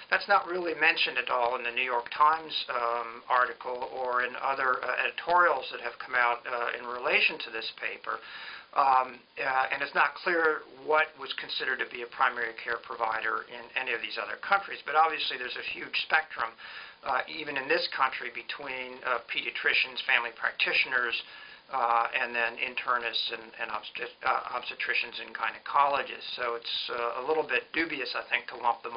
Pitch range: 120-155 Hz